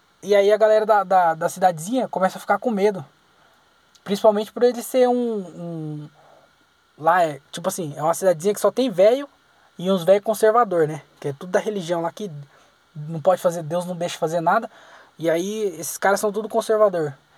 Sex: male